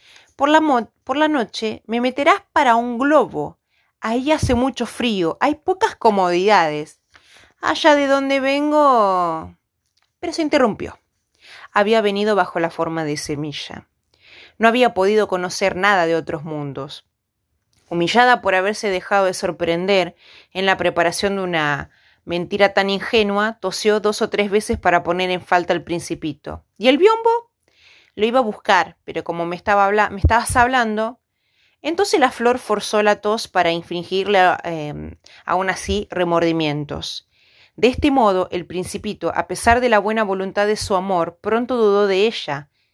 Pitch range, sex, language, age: 175-235 Hz, female, Spanish, 30-49